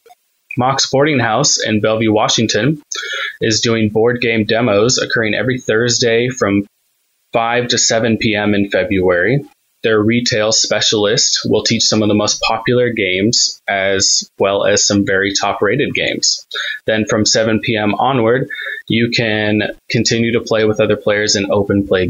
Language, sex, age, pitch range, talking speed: English, male, 20-39, 105-125 Hz, 150 wpm